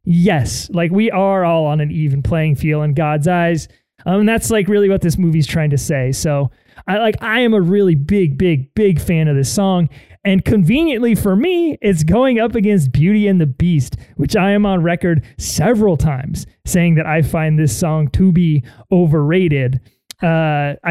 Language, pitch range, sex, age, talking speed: English, 155-195 Hz, male, 20-39, 190 wpm